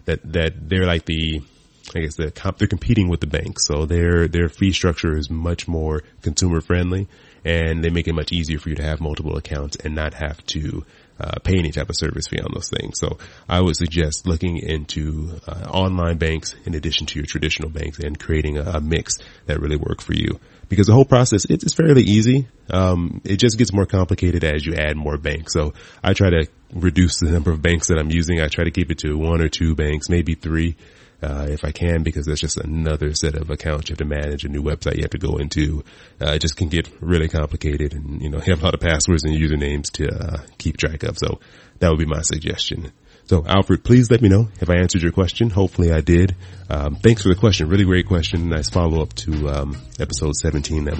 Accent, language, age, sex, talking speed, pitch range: American, English, 30-49, male, 235 wpm, 75-95 Hz